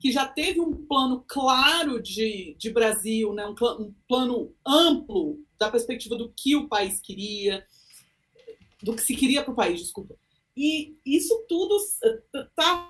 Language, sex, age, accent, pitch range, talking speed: Portuguese, female, 40-59, Brazilian, 220-340 Hz, 155 wpm